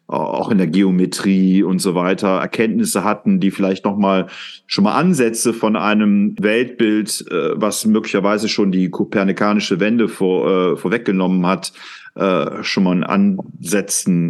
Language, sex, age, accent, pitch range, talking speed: German, male, 40-59, German, 95-115 Hz, 135 wpm